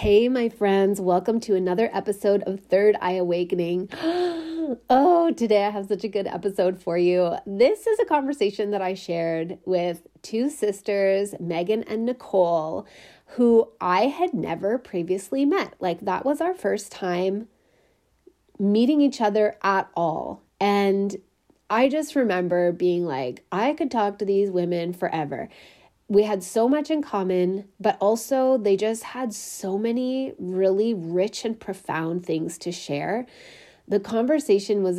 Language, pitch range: English, 180-225 Hz